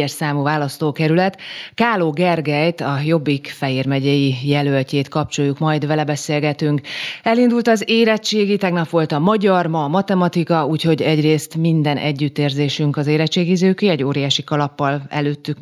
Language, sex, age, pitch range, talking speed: Hungarian, female, 30-49, 140-170 Hz, 125 wpm